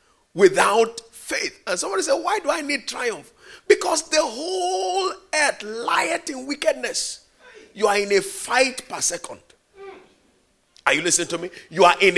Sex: male